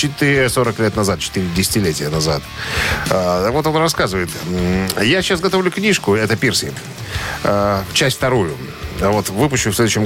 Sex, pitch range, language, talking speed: male, 100-135 Hz, Russian, 125 wpm